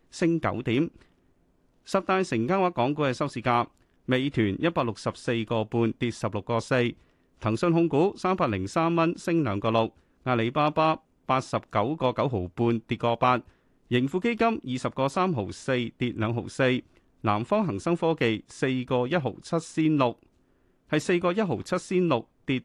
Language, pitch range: Chinese, 115-165 Hz